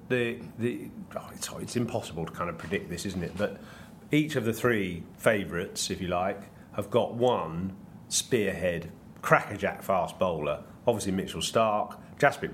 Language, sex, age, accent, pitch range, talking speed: English, male, 40-59, British, 90-110 Hz, 160 wpm